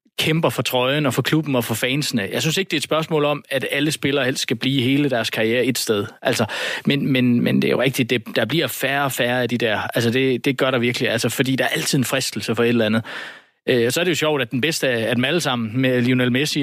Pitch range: 130-160 Hz